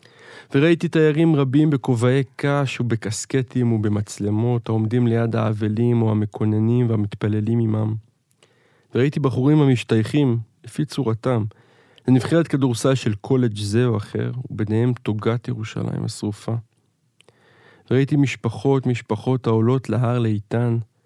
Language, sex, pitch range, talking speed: Hebrew, male, 110-125 Hz, 105 wpm